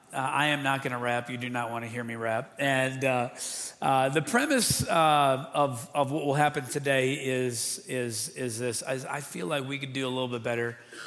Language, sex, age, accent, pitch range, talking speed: English, male, 40-59, American, 125-145 Hz, 230 wpm